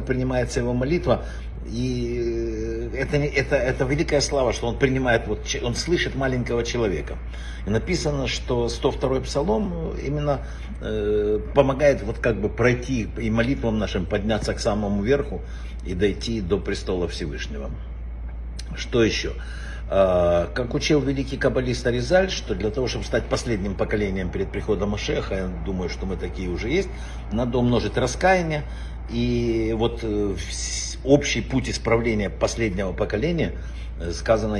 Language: Russian